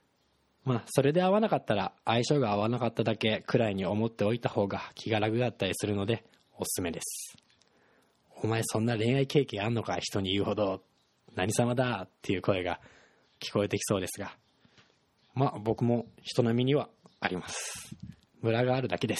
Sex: male